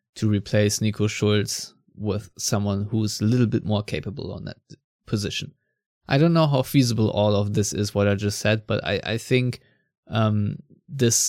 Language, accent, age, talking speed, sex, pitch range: English, German, 20-39, 180 wpm, male, 105-130 Hz